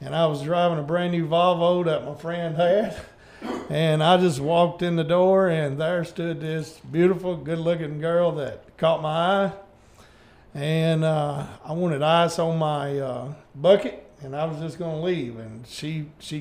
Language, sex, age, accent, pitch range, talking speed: English, male, 50-69, American, 145-175 Hz, 170 wpm